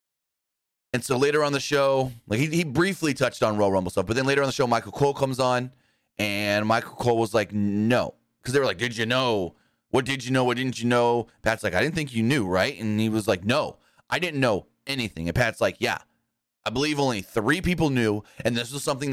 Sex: male